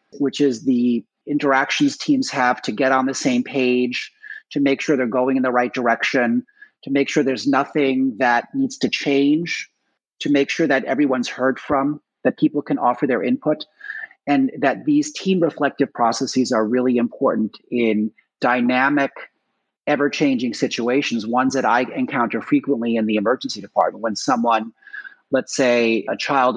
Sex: male